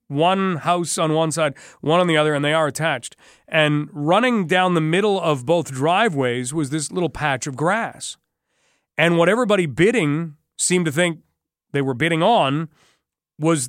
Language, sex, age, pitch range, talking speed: English, male, 40-59, 150-195 Hz, 170 wpm